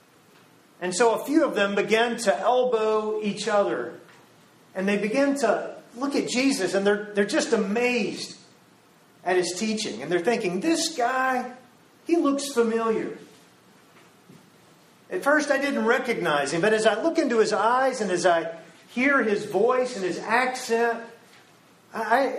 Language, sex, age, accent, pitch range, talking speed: English, male, 40-59, American, 200-260 Hz, 155 wpm